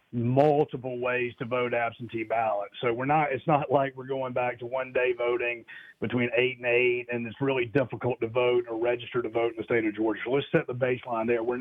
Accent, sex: American, male